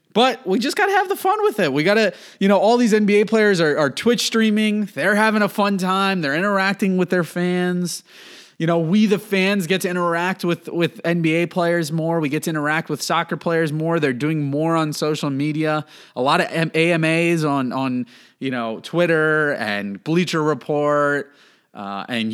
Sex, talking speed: male, 200 wpm